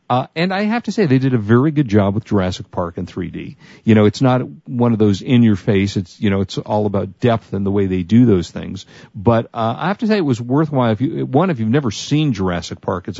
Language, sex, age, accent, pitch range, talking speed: English, male, 50-69, American, 100-125 Hz, 275 wpm